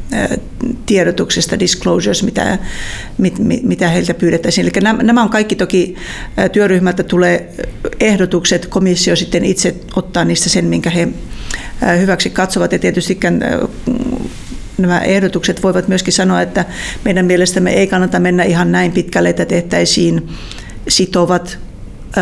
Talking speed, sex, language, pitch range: 115 wpm, female, Finnish, 170-185 Hz